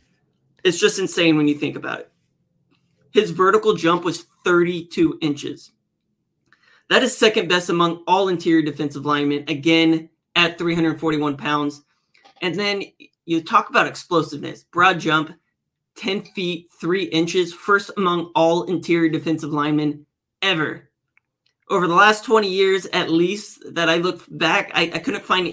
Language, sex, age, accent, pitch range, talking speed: English, male, 20-39, American, 160-205 Hz, 145 wpm